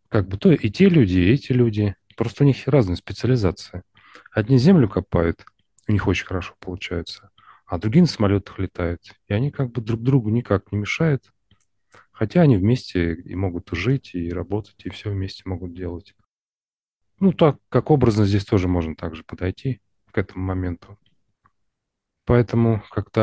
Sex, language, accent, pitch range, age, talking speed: male, Russian, native, 95-120 Hz, 30-49, 165 wpm